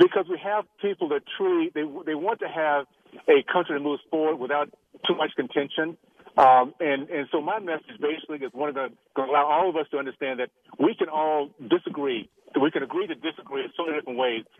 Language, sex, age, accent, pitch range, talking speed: English, male, 50-69, American, 135-165 Hz, 220 wpm